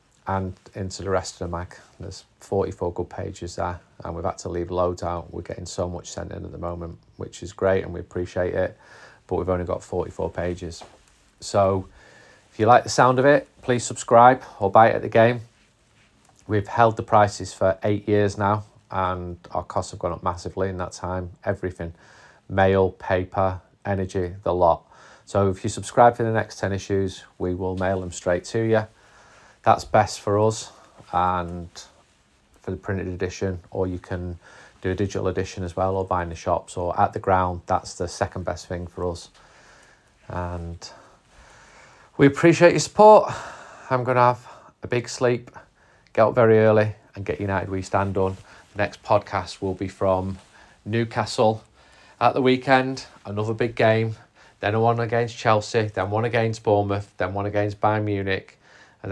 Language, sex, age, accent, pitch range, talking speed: English, male, 30-49, British, 90-110 Hz, 185 wpm